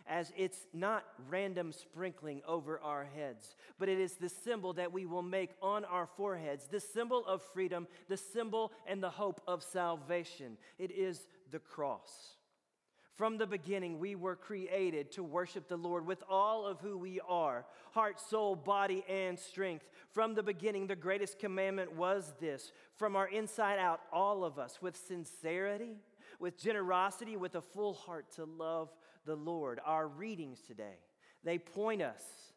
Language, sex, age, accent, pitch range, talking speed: English, male, 40-59, American, 170-205 Hz, 165 wpm